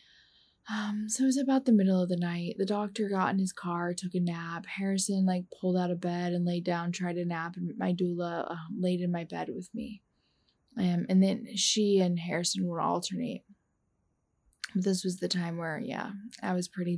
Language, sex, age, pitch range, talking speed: English, female, 20-39, 180-215 Hz, 205 wpm